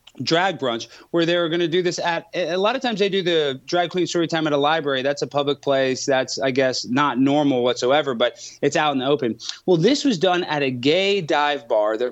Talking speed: 250 wpm